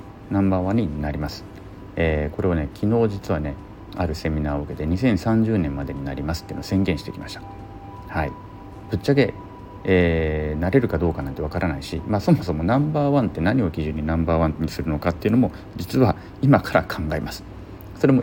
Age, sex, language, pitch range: 40-59, male, Japanese, 85-105 Hz